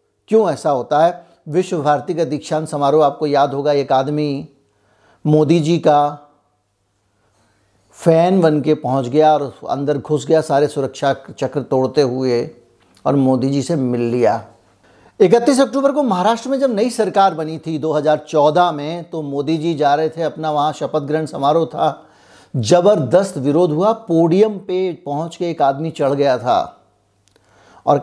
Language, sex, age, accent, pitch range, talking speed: Hindi, male, 60-79, native, 145-185 Hz, 155 wpm